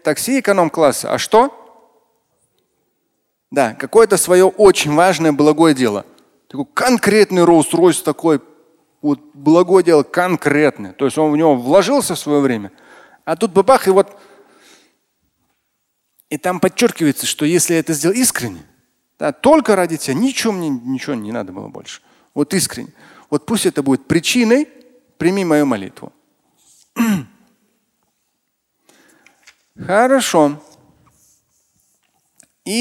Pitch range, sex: 150-220 Hz, male